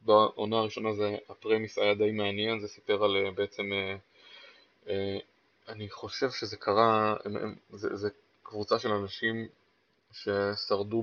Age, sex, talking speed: 20-39, male, 110 wpm